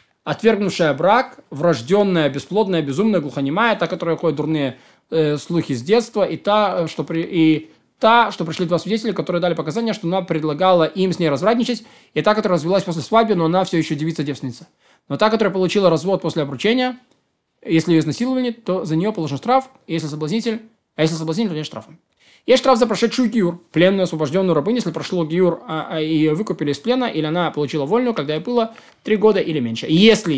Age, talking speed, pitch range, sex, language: 20-39, 190 wpm, 155-215 Hz, male, Russian